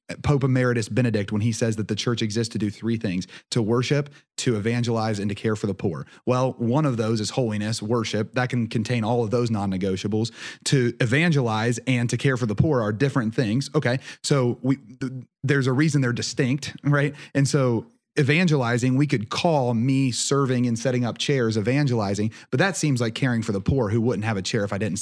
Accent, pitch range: American, 110-140 Hz